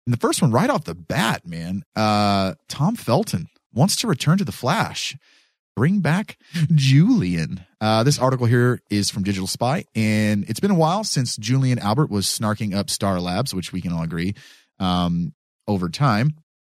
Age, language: 30-49, English